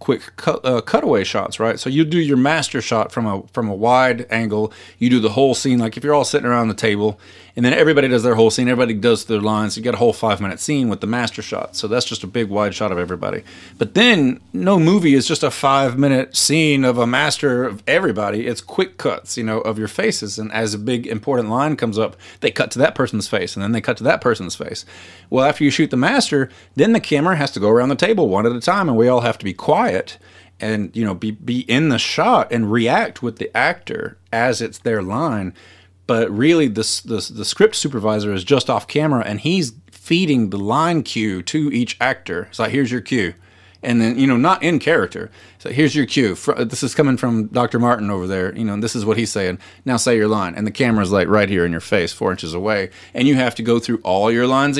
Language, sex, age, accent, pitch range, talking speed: English, male, 30-49, American, 105-135 Hz, 250 wpm